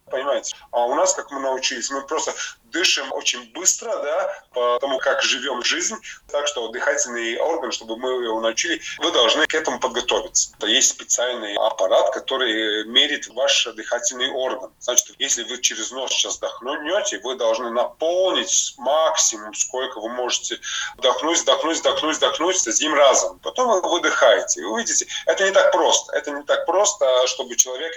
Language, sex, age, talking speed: Russian, male, 20-39, 160 wpm